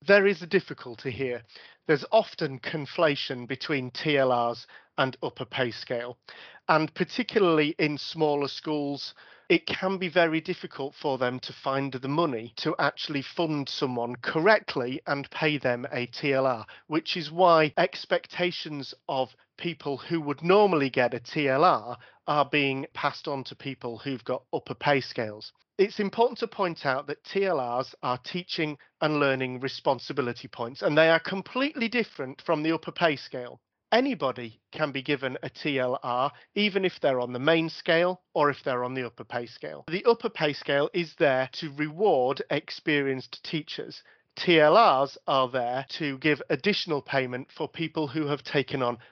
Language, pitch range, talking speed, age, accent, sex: English, 130-165 Hz, 160 wpm, 40-59, British, male